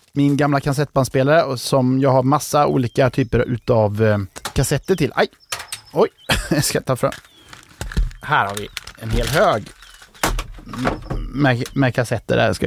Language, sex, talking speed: Swedish, male, 145 wpm